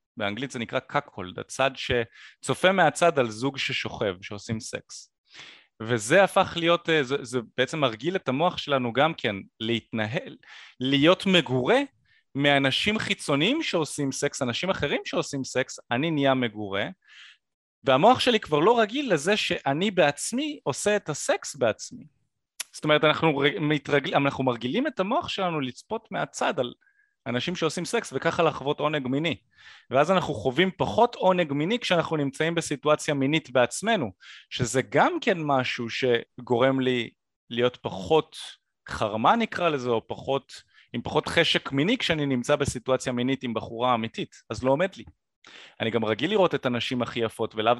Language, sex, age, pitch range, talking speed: Hebrew, male, 30-49, 120-170 Hz, 150 wpm